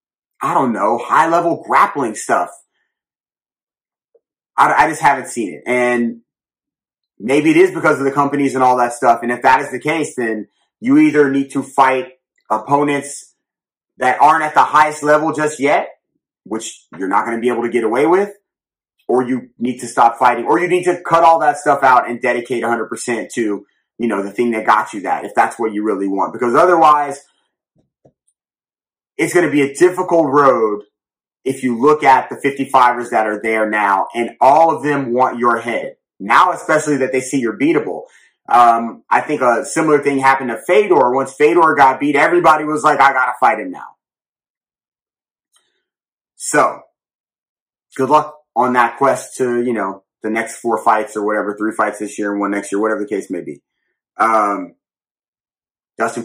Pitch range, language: 115-150 Hz, English